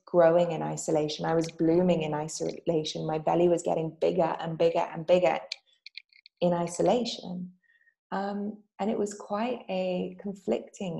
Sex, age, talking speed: female, 20-39, 140 wpm